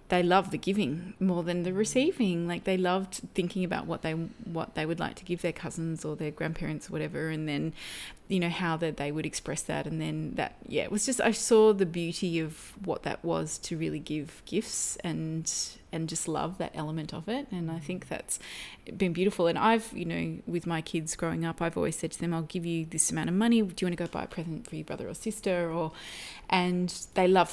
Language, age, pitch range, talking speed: English, 20-39, 165-220 Hz, 240 wpm